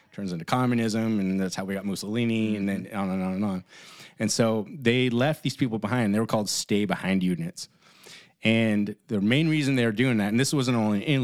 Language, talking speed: English, 215 wpm